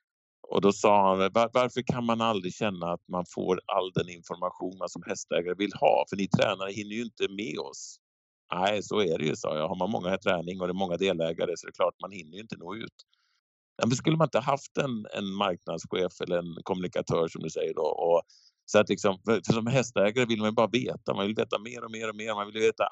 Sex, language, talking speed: male, Swedish, 240 wpm